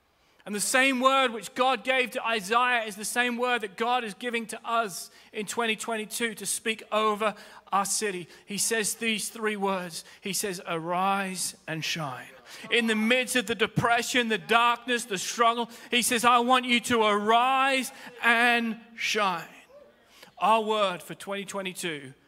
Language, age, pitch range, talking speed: English, 30-49, 190-245 Hz, 160 wpm